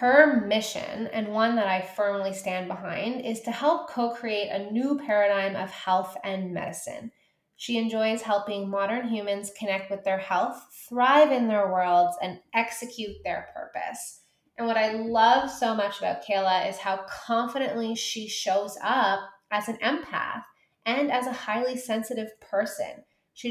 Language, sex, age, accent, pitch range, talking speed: English, female, 20-39, American, 195-240 Hz, 155 wpm